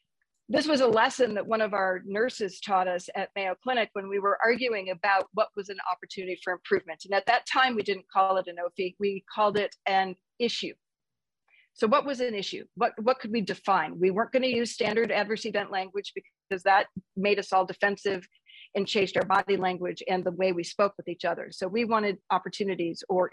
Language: English